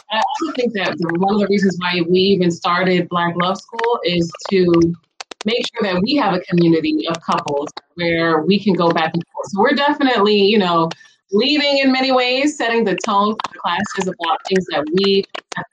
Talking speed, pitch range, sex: 200 wpm, 175-225 Hz, female